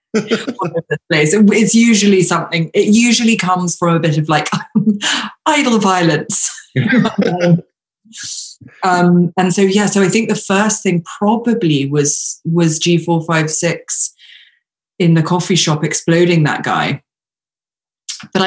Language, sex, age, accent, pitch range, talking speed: English, female, 20-39, British, 145-180 Hz, 115 wpm